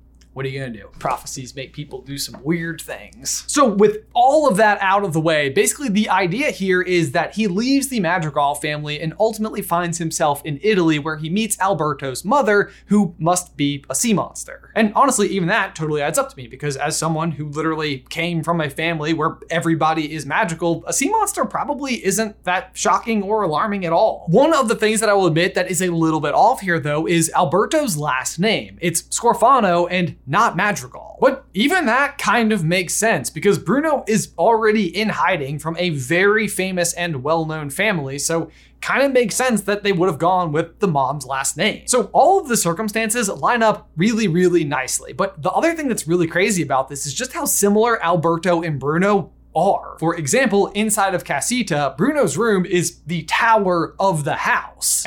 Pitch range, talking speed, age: 155-215 Hz, 200 wpm, 20-39